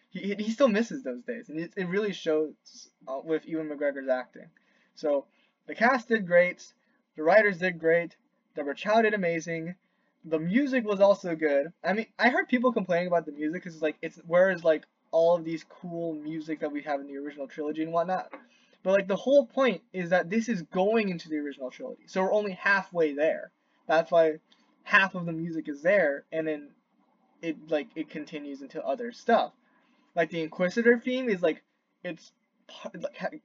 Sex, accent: male, American